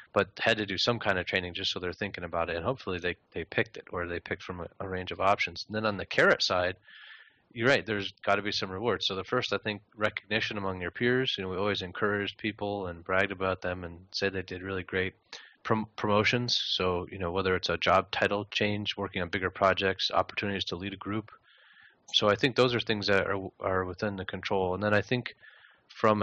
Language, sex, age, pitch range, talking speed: English, male, 30-49, 95-110 Hz, 240 wpm